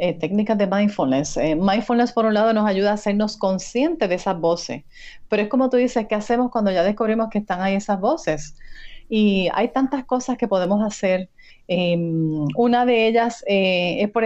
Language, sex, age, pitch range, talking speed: Spanish, female, 30-49, 195-240 Hz, 195 wpm